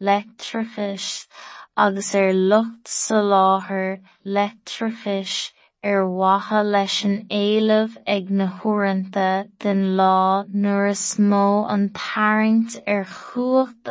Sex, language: female, English